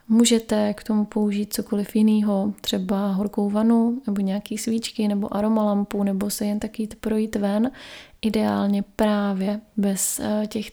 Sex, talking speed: female, 140 wpm